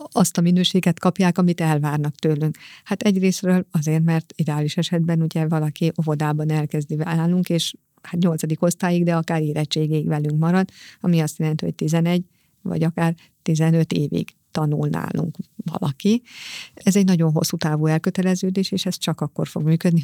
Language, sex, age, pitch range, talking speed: Hungarian, female, 50-69, 155-185 Hz, 150 wpm